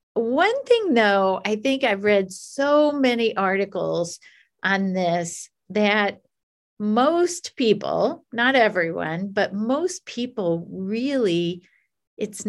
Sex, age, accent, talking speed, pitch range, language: female, 50-69, American, 105 wpm, 185-245 Hz, English